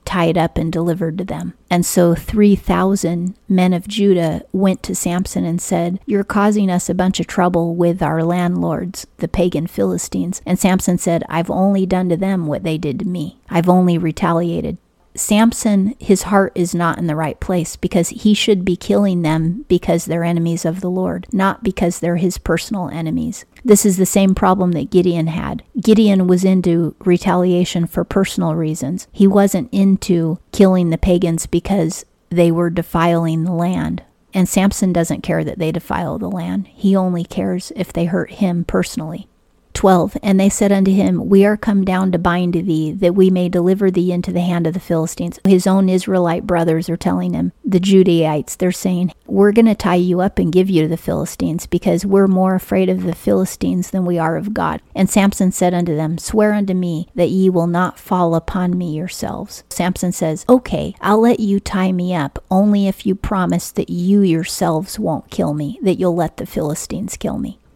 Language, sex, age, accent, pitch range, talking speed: English, female, 40-59, American, 170-195 Hz, 195 wpm